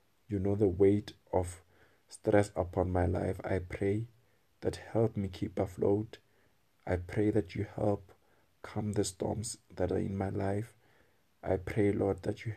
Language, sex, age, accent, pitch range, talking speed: English, male, 50-69, South African, 95-110 Hz, 160 wpm